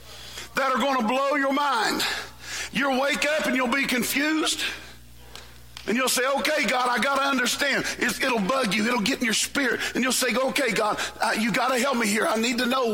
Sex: male